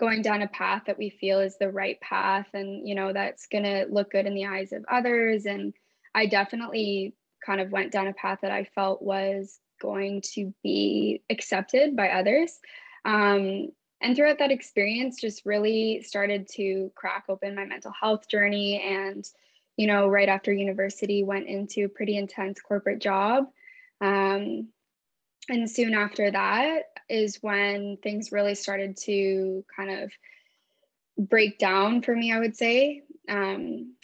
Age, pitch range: 10-29, 195-220 Hz